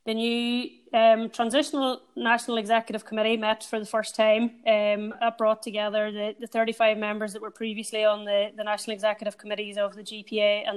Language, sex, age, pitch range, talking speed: English, female, 20-39, 210-225 Hz, 185 wpm